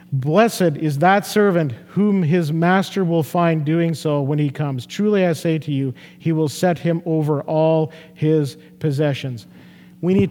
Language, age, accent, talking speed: English, 50-69, American, 170 wpm